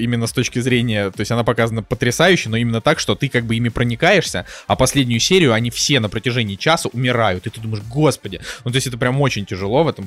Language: Russian